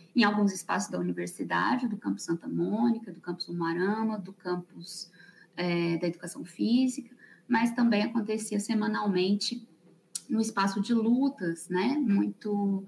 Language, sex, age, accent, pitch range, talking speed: Portuguese, female, 20-39, Brazilian, 175-230 Hz, 135 wpm